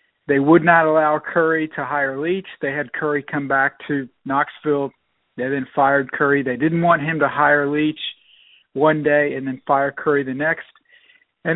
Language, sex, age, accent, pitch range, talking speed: English, male, 50-69, American, 145-165 Hz, 180 wpm